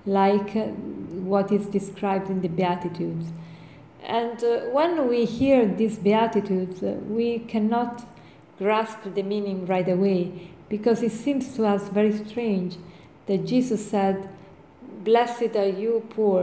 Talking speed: 135 wpm